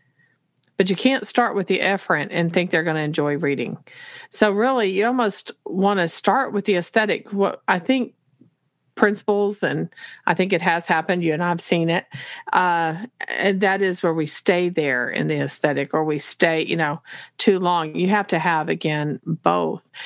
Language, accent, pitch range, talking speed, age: English, American, 160-205 Hz, 190 wpm, 40-59